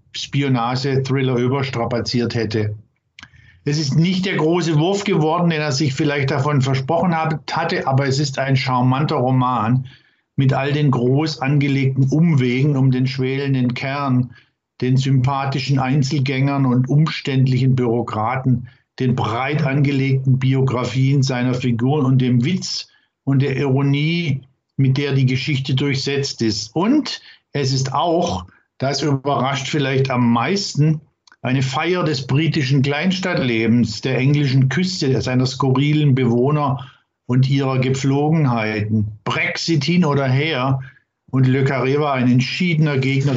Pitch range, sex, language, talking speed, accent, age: 130-145 Hz, male, German, 125 wpm, German, 50-69